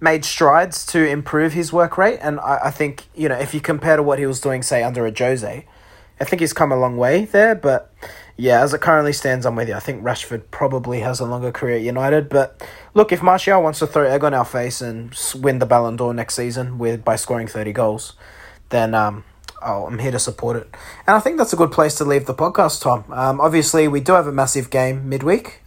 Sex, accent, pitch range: male, Australian, 130-175 Hz